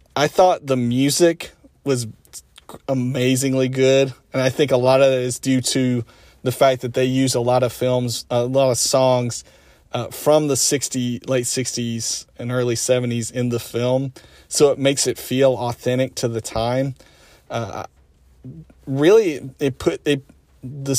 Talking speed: 165 wpm